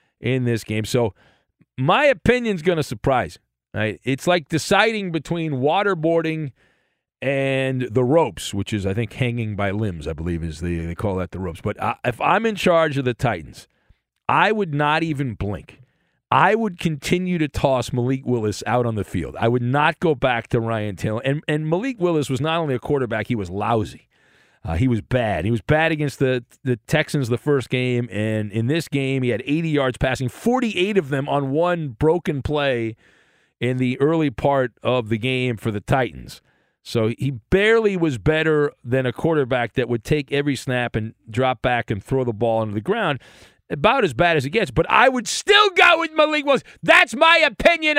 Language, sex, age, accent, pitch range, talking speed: English, male, 40-59, American, 120-175 Hz, 200 wpm